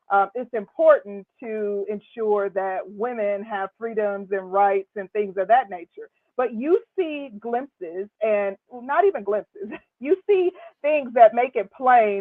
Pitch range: 200-255 Hz